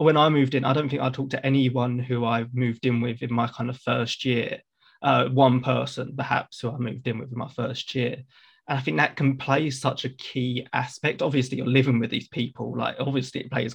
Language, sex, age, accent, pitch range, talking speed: English, male, 20-39, British, 125-135 Hz, 240 wpm